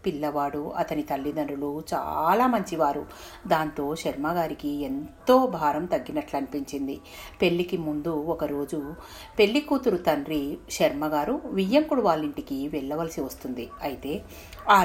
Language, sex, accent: Telugu, female, native